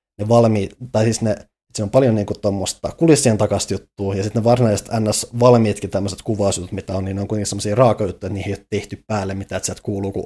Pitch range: 100-115 Hz